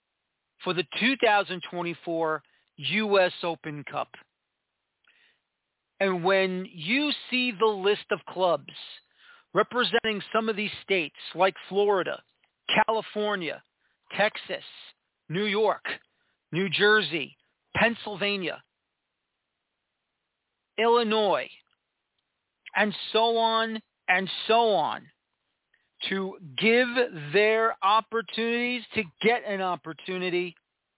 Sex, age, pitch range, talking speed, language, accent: male, 40-59, 175-220 Hz, 85 wpm, English, American